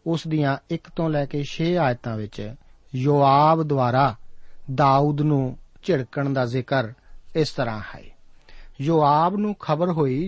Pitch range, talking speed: 130-165 Hz, 135 wpm